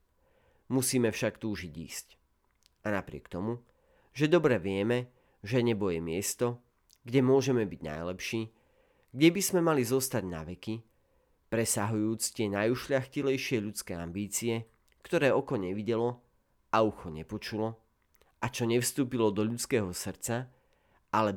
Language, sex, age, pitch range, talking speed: Slovak, male, 40-59, 95-125 Hz, 120 wpm